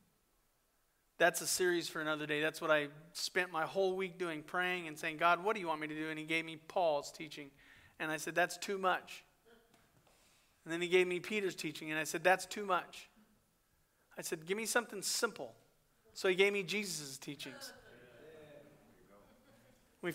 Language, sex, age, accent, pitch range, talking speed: English, male, 40-59, American, 170-210 Hz, 190 wpm